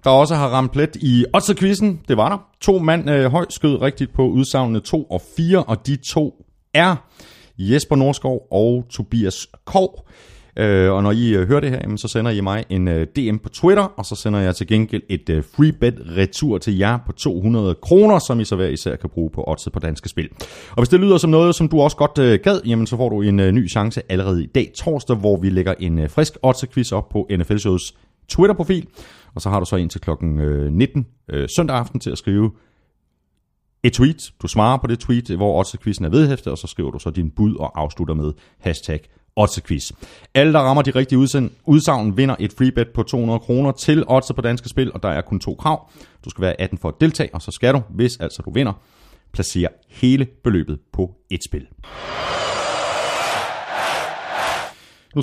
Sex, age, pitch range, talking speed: male, 30-49, 95-135 Hz, 205 wpm